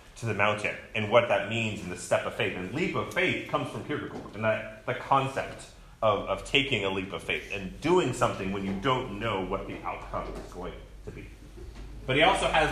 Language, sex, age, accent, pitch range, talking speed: English, male, 30-49, American, 105-140 Hz, 225 wpm